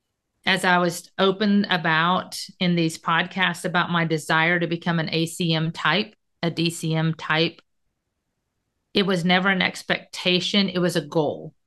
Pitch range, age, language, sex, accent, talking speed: 165-190 Hz, 40-59, English, female, American, 145 wpm